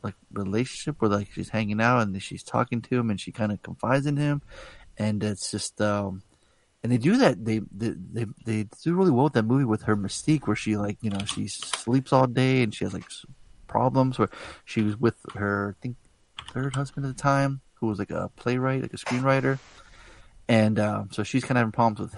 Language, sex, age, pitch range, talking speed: English, male, 30-49, 110-135 Hz, 225 wpm